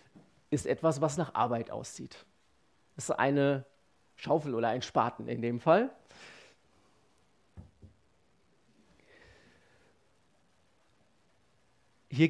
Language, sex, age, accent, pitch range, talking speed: German, male, 40-59, German, 130-170 Hz, 85 wpm